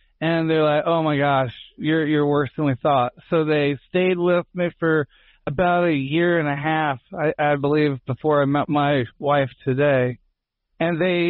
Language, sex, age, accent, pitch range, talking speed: English, male, 40-59, American, 145-170 Hz, 185 wpm